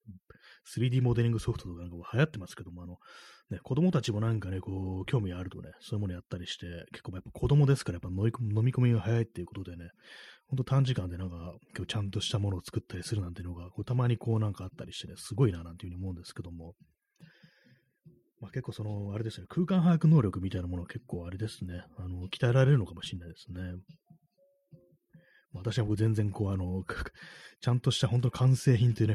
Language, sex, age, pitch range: Japanese, male, 30-49, 90-120 Hz